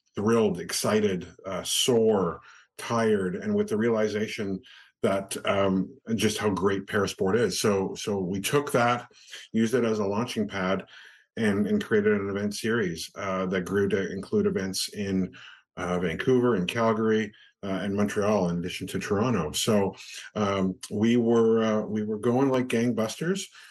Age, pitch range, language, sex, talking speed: 50-69, 100-135 Hz, English, male, 155 wpm